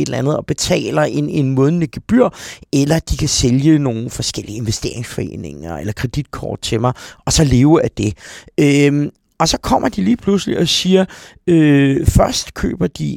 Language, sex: Danish, male